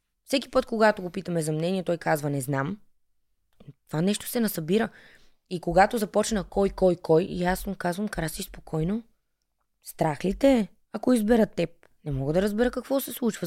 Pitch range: 175-225 Hz